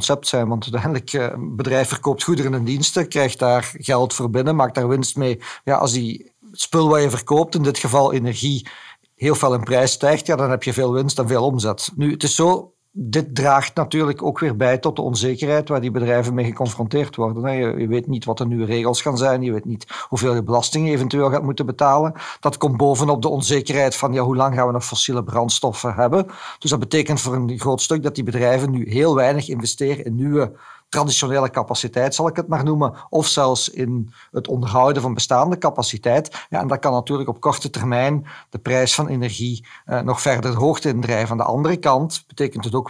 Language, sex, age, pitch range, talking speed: Dutch, male, 50-69, 120-145 Hz, 210 wpm